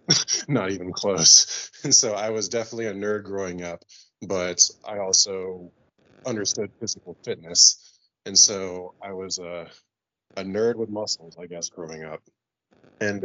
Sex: male